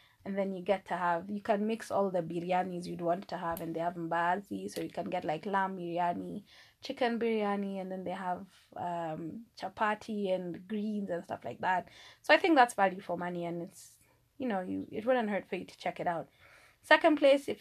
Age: 20-39